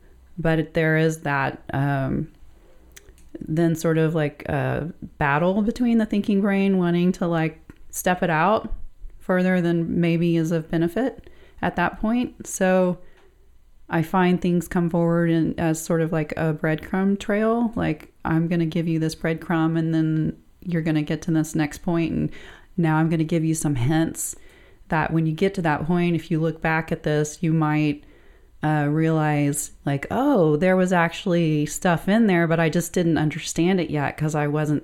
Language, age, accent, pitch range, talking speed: English, 30-49, American, 150-170 Hz, 185 wpm